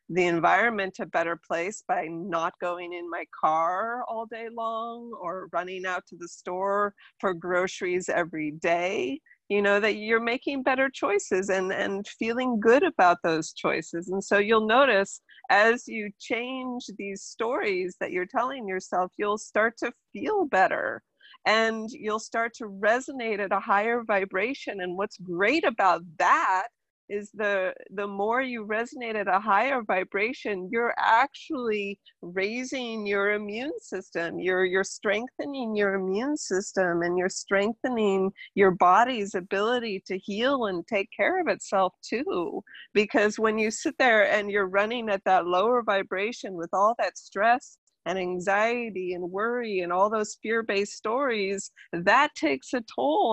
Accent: American